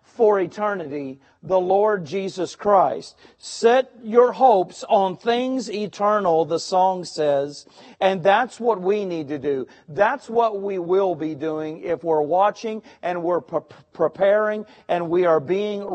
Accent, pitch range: American, 160-220 Hz